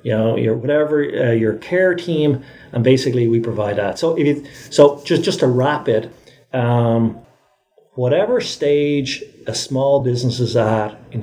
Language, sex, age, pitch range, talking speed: English, male, 50-69, 110-135 Hz, 165 wpm